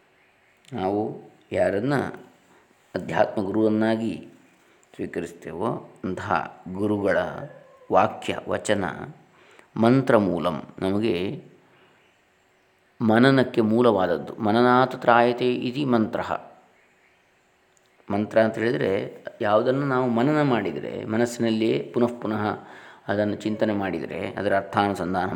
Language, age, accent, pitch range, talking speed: Kannada, 20-39, native, 100-120 Hz, 75 wpm